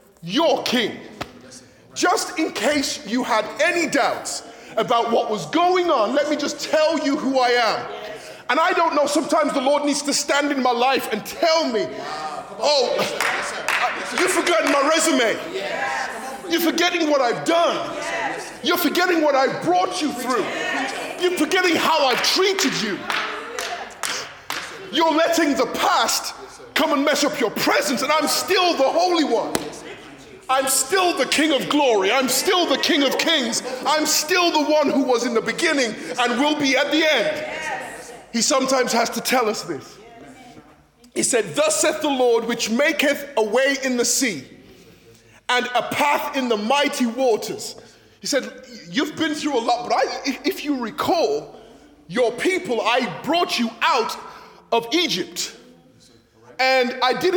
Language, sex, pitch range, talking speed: English, male, 255-325 Hz, 160 wpm